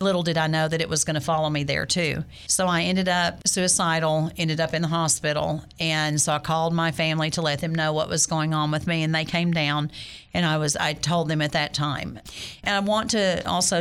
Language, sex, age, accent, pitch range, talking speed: English, female, 40-59, American, 155-185 Hz, 245 wpm